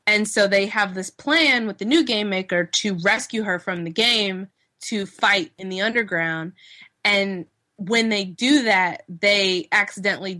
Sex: female